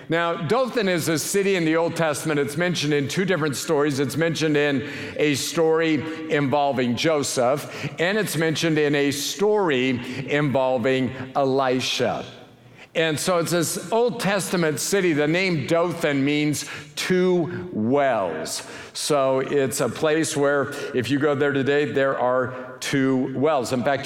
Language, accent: English, American